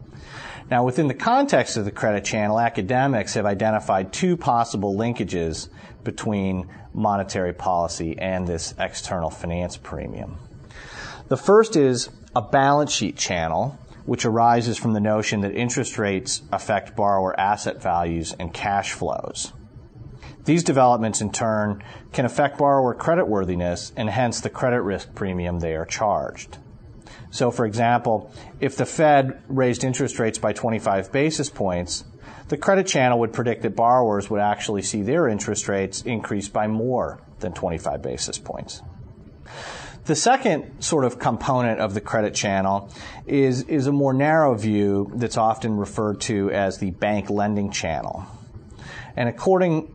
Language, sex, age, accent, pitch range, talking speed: English, male, 40-59, American, 100-130 Hz, 145 wpm